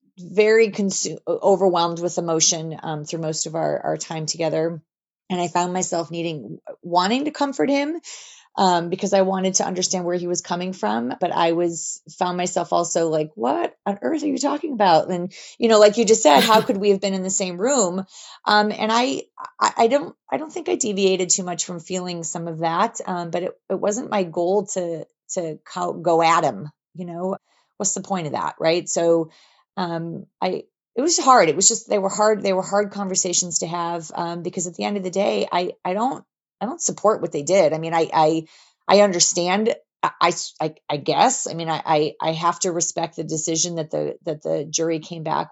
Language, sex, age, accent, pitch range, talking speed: English, female, 30-49, American, 165-200 Hz, 215 wpm